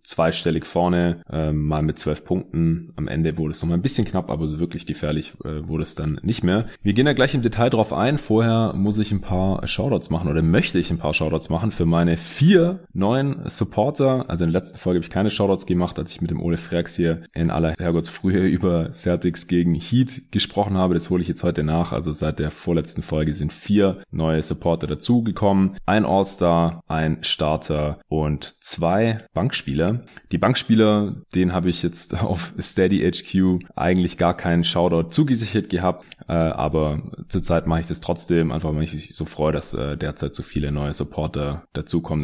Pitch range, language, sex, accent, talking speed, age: 80-100 Hz, German, male, German, 195 wpm, 20-39